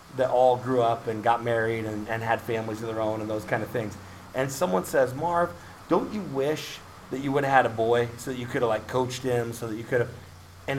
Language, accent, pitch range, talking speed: English, American, 115-140 Hz, 260 wpm